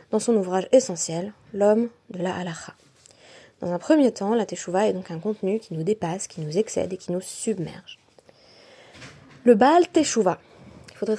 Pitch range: 190-240 Hz